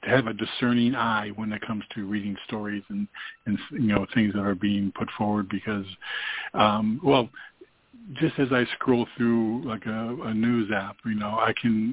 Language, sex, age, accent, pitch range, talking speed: English, male, 50-69, American, 105-130 Hz, 190 wpm